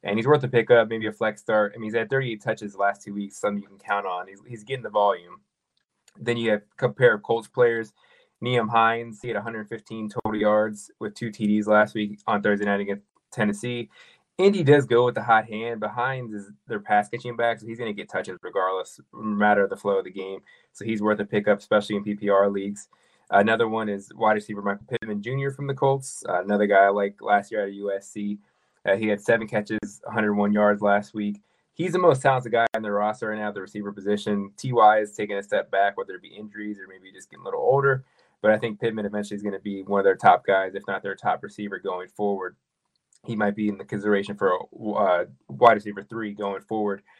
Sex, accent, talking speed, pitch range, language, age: male, American, 235 wpm, 100-115 Hz, English, 20-39